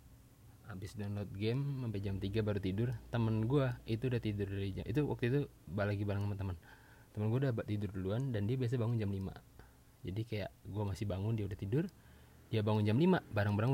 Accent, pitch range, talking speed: native, 100-130 Hz, 205 wpm